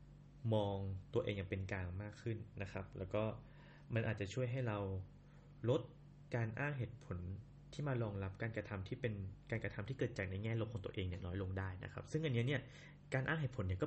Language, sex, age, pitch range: Thai, male, 20-39, 100-145 Hz